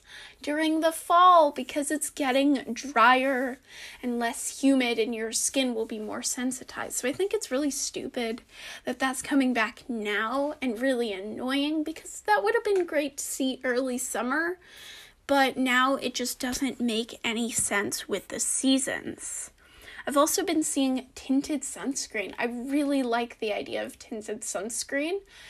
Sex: female